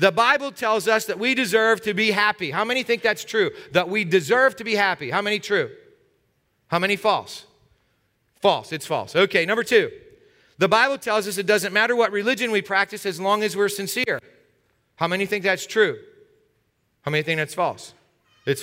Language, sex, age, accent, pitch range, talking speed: English, male, 40-59, American, 180-235 Hz, 195 wpm